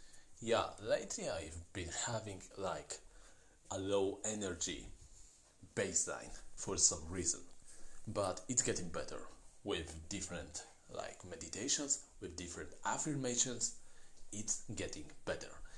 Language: English